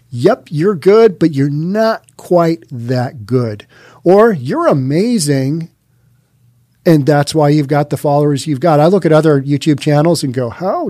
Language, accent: English, American